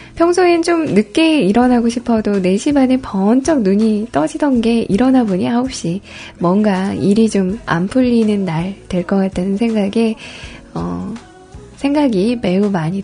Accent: native